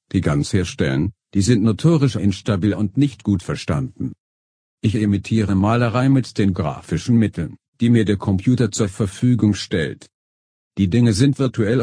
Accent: German